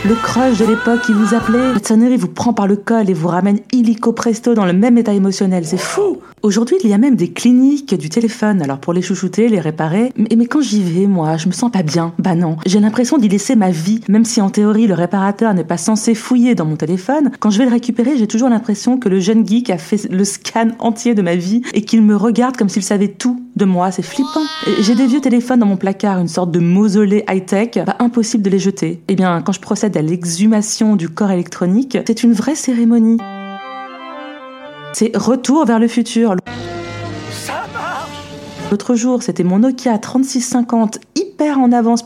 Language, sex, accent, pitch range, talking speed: French, female, French, 190-240 Hz, 215 wpm